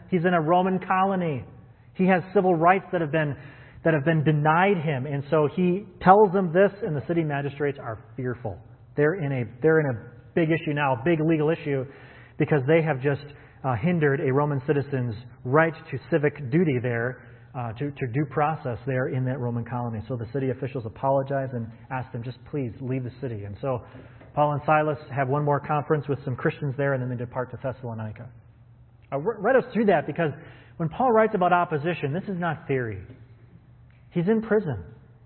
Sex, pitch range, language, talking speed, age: male, 125-175 Hz, English, 195 wpm, 30-49